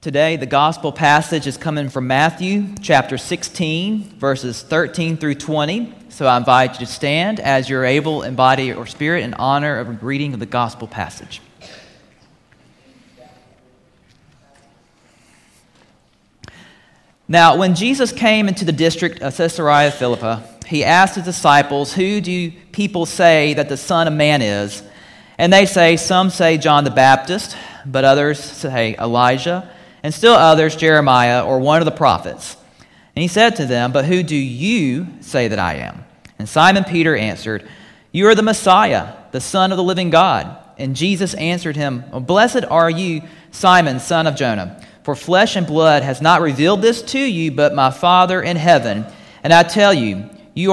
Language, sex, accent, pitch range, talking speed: English, male, American, 135-180 Hz, 165 wpm